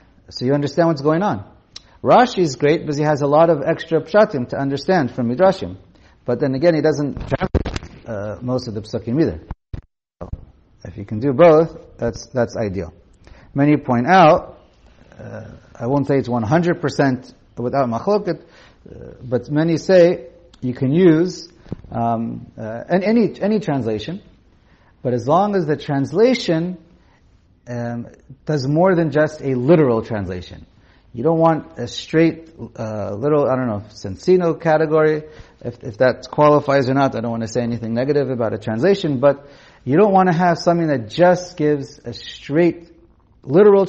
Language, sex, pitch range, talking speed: English, male, 115-165 Hz, 165 wpm